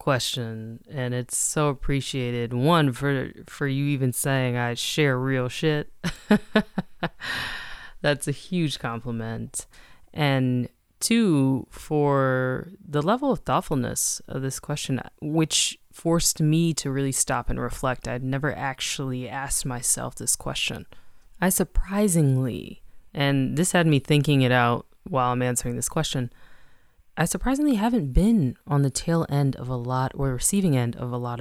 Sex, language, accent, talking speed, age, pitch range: female, English, American, 145 wpm, 20-39, 130-160 Hz